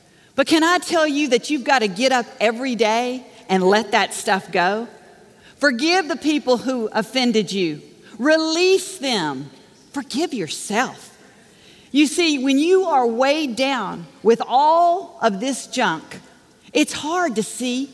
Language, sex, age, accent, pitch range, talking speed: English, female, 50-69, American, 215-295 Hz, 145 wpm